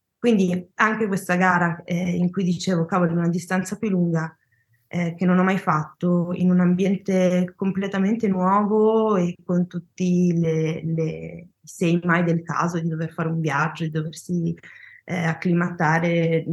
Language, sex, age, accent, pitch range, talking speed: Italian, female, 20-39, native, 165-180 Hz, 155 wpm